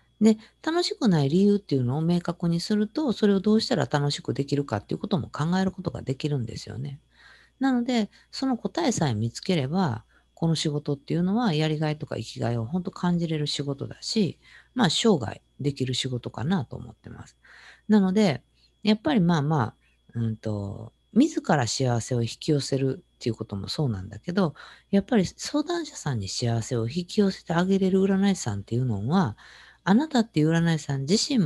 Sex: female